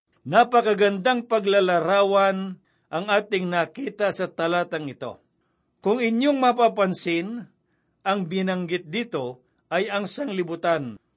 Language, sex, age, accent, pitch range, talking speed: Filipino, male, 60-79, native, 170-205 Hz, 90 wpm